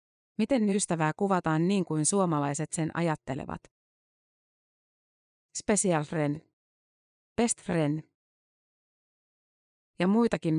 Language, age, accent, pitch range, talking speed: Finnish, 30-49, native, 155-185 Hz, 80 wpm